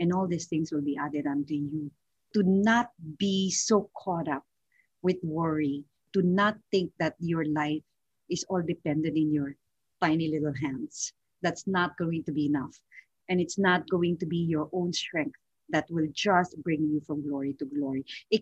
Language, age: English, 40-59